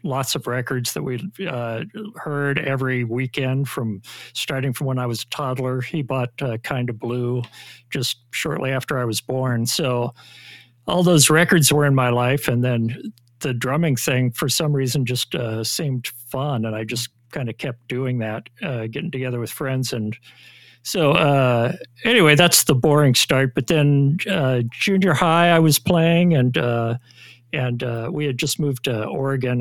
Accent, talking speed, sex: American, 180 wpm, male